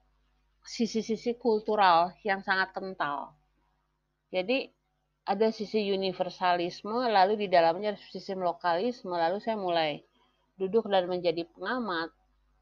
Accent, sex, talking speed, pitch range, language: native, female, 105 wpm, 165-215 Hz, Indonesian